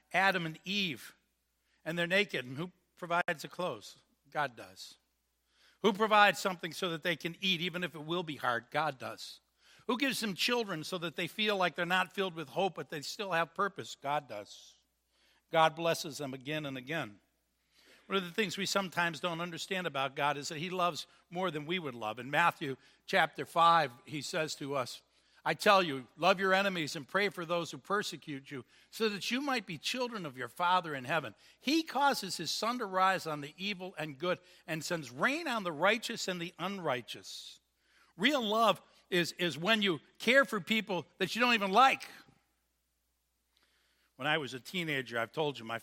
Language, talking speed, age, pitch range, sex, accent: English, 195 wpm, 60-79, 140-185 Hz, male, American